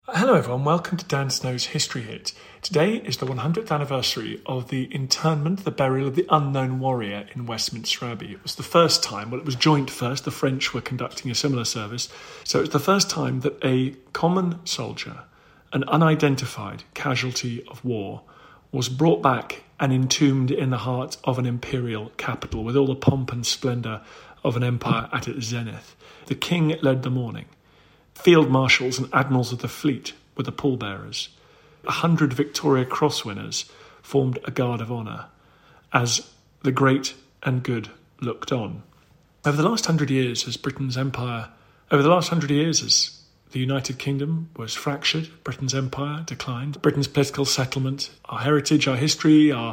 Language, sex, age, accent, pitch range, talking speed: English, male, 40-59, British, 125-150 Hz, 170 wpm